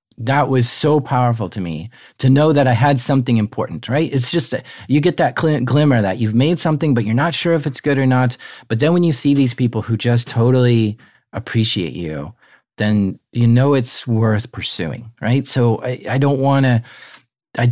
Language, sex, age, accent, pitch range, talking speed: English, male, 40-59, American, 105-130 Hz, 205 wpm